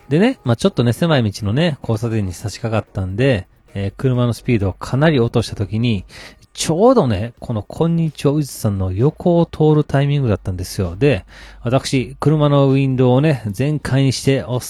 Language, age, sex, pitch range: Japanese, 40-59, male, 105-140 Hz